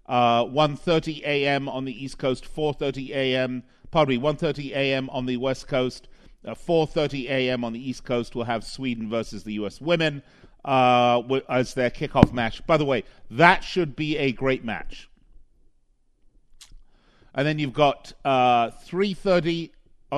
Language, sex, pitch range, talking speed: English, male, 120-155 Hz, 150 wpm